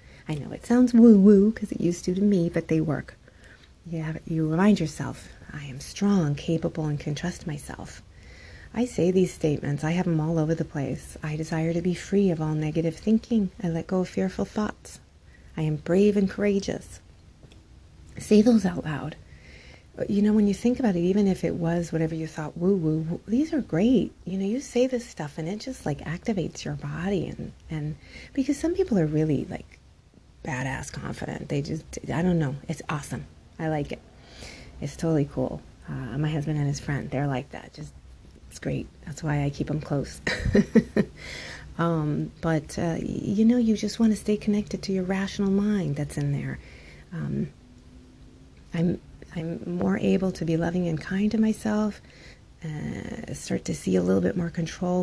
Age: 30-49